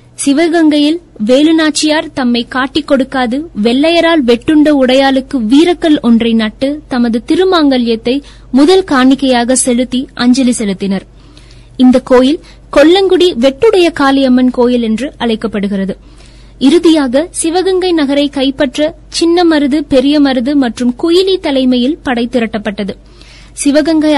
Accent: native